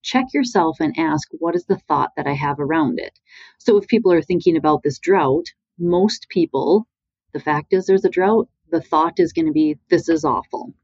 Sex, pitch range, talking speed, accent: female, 150-205 Hz, 210 wpm, American